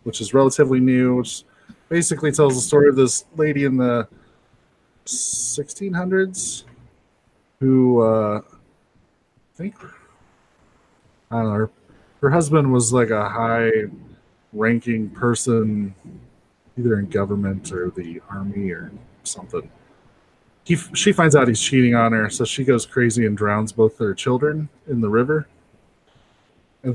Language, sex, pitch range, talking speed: English, male, 110-130 Hz, 130 wpm